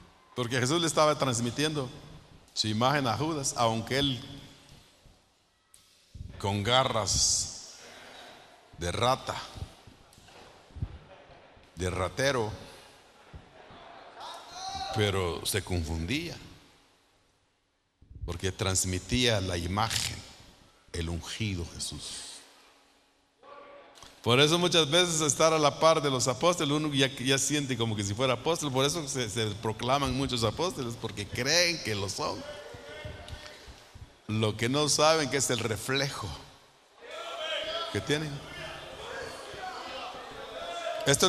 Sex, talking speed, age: male, 100 wpm, 50-69